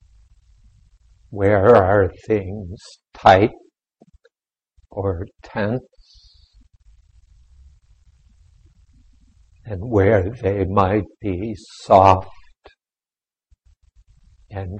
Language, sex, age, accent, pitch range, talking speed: English, male, 60-79, American, 85-105 Hz, 55 wpm